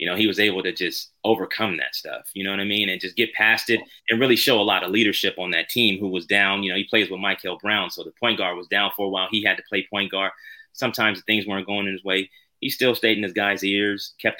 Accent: American